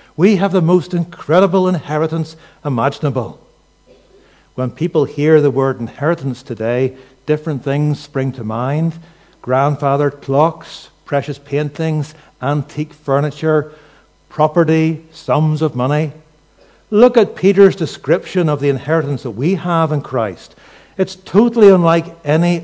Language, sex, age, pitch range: English, male, 60-79, 145-190 Hz